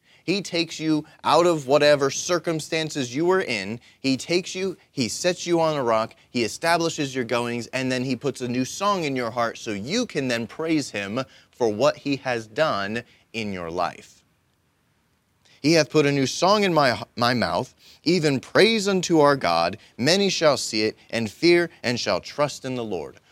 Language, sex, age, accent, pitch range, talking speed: English, male, 30-49, American, 120-160 Hz, 190 wpm